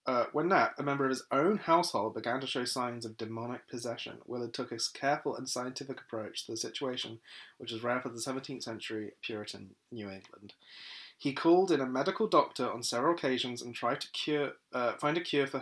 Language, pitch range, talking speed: English, 120-145 Hz, 210 wpm